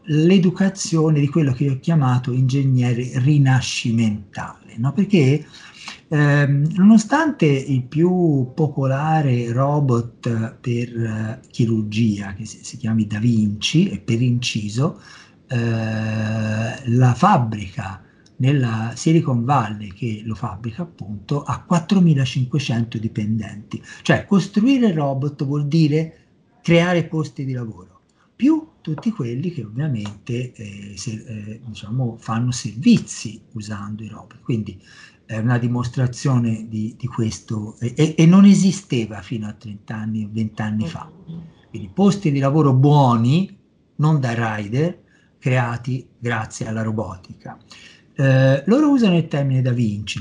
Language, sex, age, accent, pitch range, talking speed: Italian, male, 50-69, native, 110-150 Hz, 125 wpm